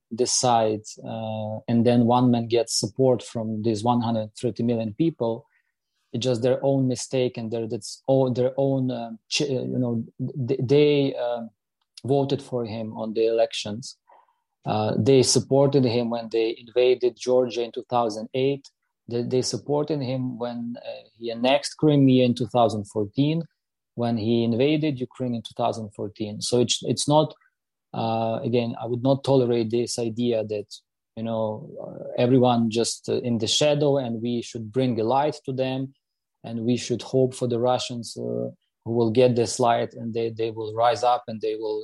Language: English